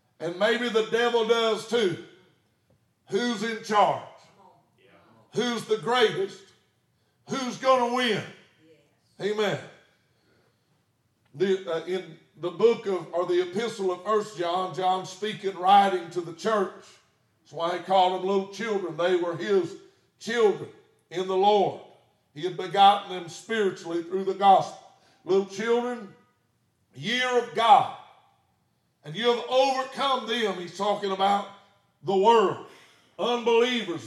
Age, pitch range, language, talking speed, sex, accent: 60-79, 180-230 Hz, English, 125 wpm, male, American